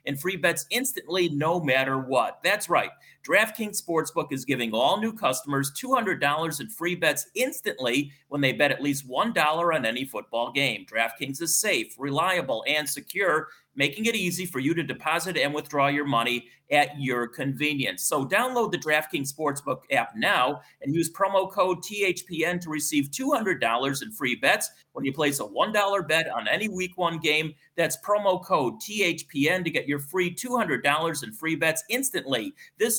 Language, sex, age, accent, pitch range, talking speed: English, male, 30-49, American, 145-190 Hz, 170 wpm